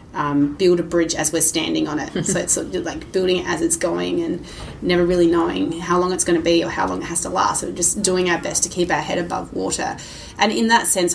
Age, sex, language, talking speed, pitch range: 20-39, female, English, 275 wpm, 165-185 Hz